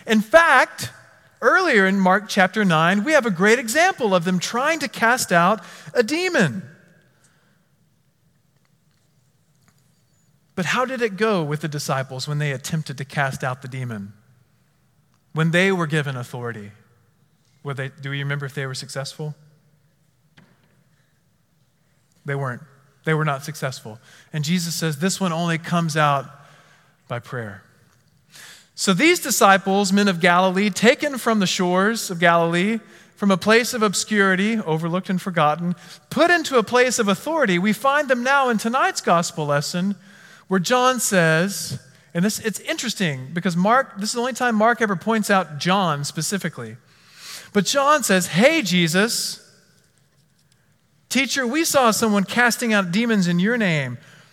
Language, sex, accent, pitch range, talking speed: English, male, American, 150-210 Hz, 145 wpm